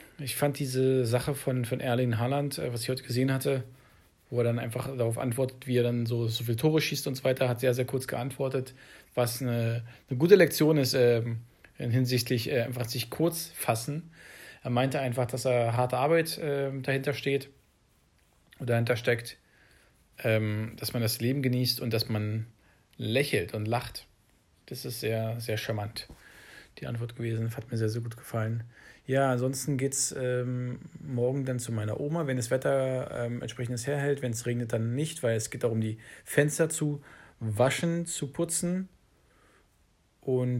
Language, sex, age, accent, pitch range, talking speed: English, male, 40-59, German, 115-135 Hz, 175 wpm